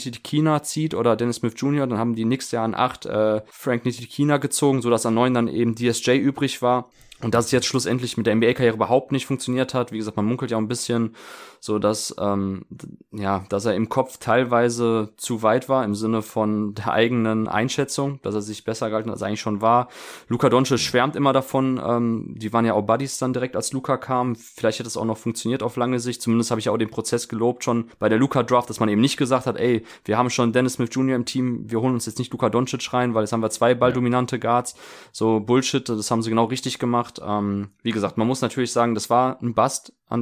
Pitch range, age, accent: 110-125 Hz, 20-39, German